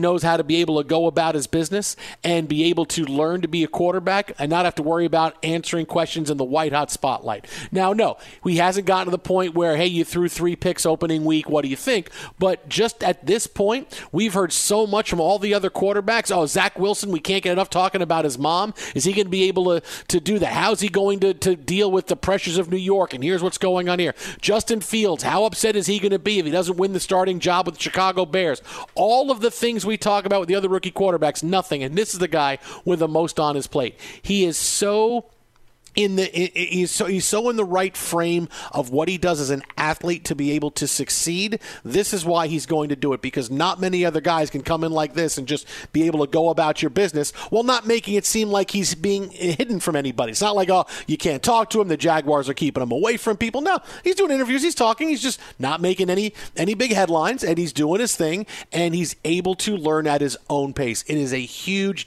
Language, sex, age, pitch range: English, male, 50-69, 155-195 Hz